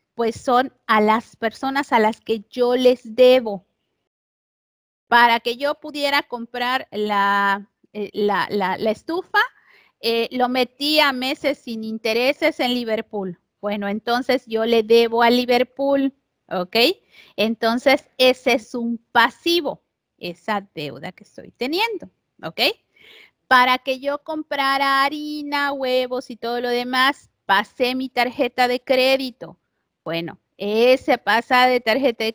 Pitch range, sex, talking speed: 210-270 Hz, female, 130 wpm